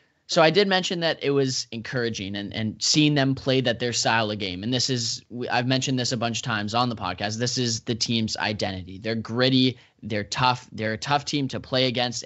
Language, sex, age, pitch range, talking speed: English, male, 10-29, 110-135 Hz, 230 wpm